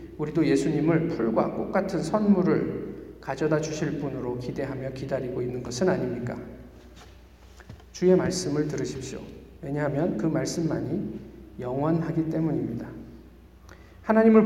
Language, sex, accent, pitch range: Korean, male, native, 130-175 Hz